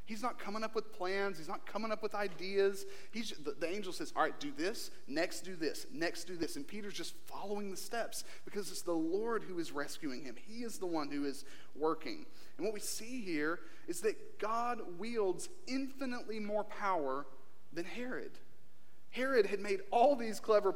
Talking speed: 195 wpm